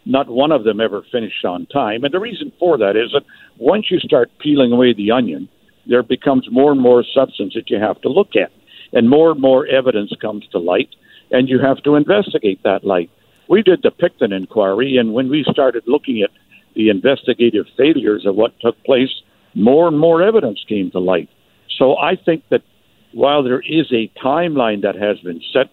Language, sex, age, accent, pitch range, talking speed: English, male, 60-79, American, 110-135 Hz, 205 wpm